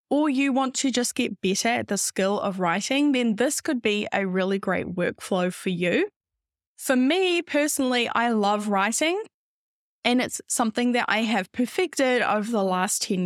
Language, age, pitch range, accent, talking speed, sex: English, 10-29, 200-275 Hz, Australian, 175 wpm, female